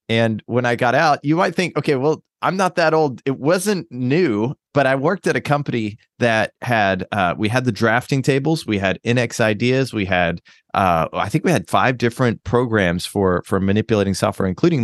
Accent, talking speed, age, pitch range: American, 200 wpm, 30-49, 95-125 Hz